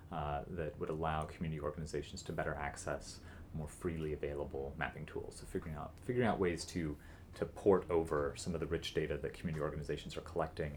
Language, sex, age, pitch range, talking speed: English, male, 30-49, 75-90 Hz, 185 wpm